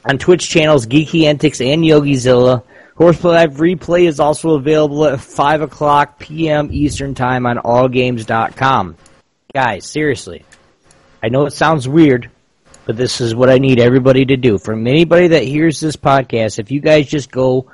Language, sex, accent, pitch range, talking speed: English, male, American, 125-160 Hz, 160 wpm